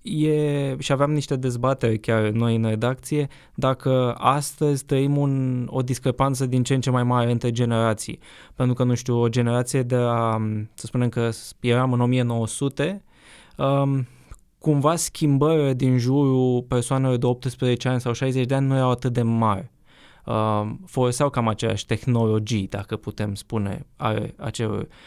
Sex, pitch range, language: male, 115-135 Hz, Romanian